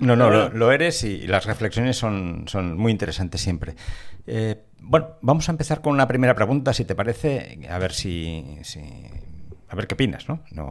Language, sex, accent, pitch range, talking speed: Spanish, male, Spanish, 90-120 Hz, 195 wpm